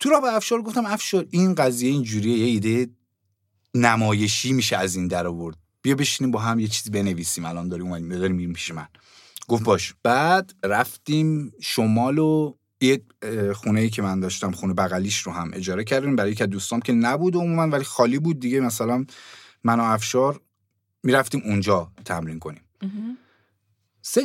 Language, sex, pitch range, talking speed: Persian, male, 100-150 Hz, 165 wpm